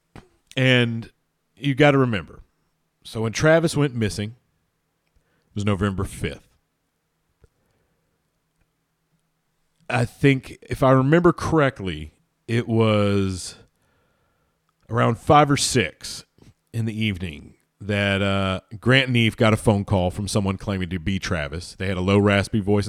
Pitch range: 95-120 Hz